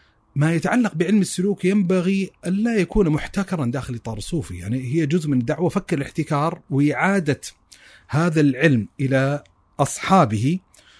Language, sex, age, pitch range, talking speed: Arabic, male, 30-49, 130-175 Hz, 125 wpm